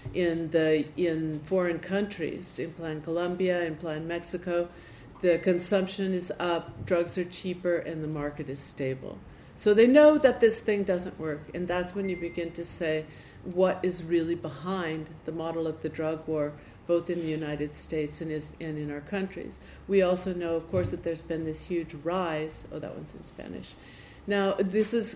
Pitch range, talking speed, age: 165-195 Hz, 180 wpm, 50-69